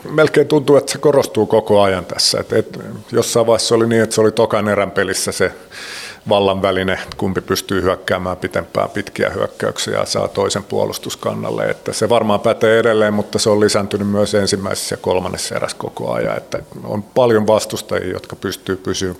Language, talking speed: Finnish, 170 wpm